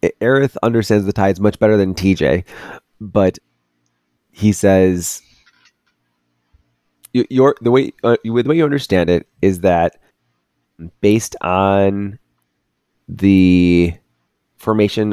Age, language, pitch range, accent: 30-49, English, 75-100 Hz, American